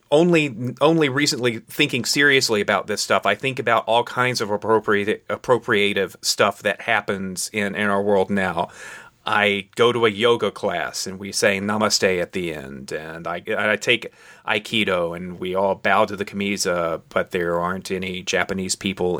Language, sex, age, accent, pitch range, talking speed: English, male, 30-49, American, 95-120 Hz, 170 wpm